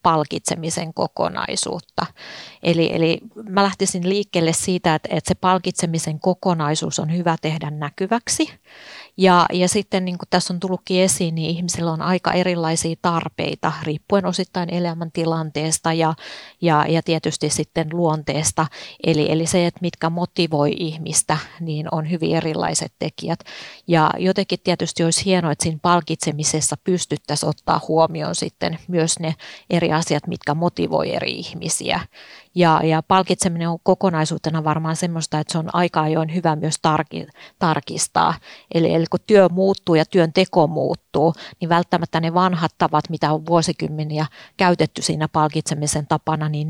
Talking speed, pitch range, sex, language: 140 wpm, 155-180 Hz, female, Finnish